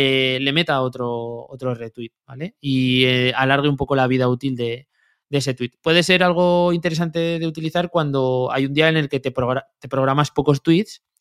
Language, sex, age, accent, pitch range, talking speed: English, male, 20-39, Spanish, 130-165 Hz, 195 wpm